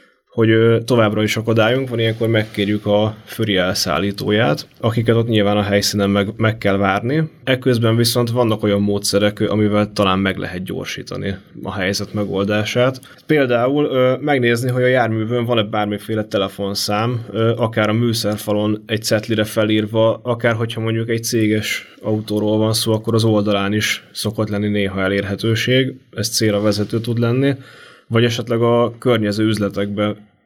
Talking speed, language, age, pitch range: 140 wpm, Hungarian, 20-39, 100-115 Hz